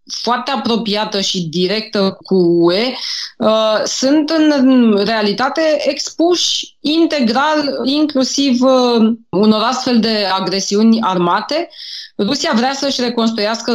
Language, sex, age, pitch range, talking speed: Romanian, female, 20-39, 200-245 Hz, 90 wpm